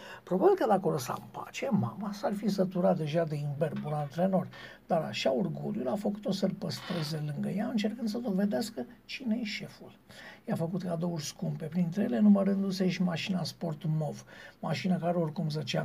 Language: Romanian